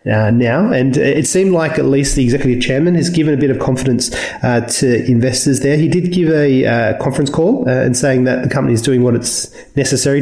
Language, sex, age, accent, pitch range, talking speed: English, male, 30-49, Australian, 120-140 Hz, 230 wpm